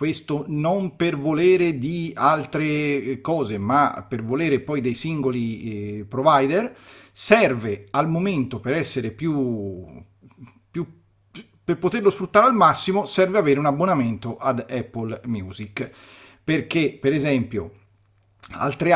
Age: 40-59